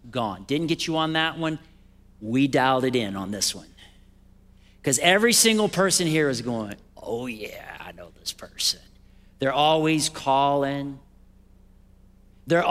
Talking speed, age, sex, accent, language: 145 wpm, 40-59, male, American, English